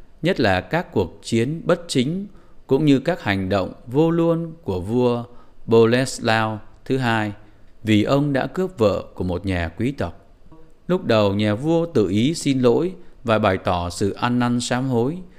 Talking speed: 175 wpm